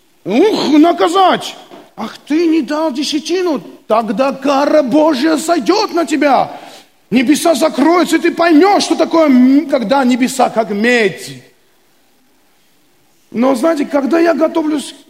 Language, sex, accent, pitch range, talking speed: Russian, male, native, 230-315 Hz, 115 wpm